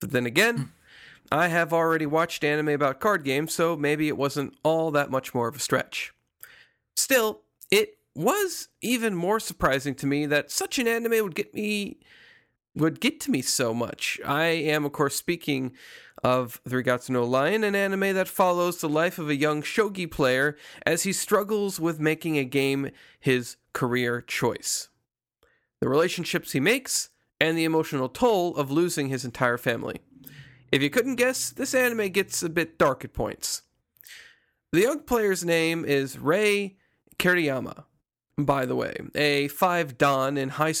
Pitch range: 140-185 Hz